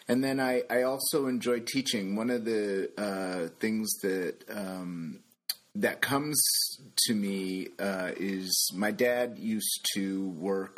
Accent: American